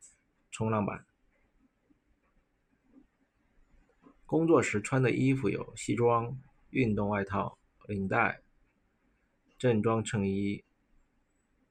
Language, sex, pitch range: Chinese, male, 100-120 Hz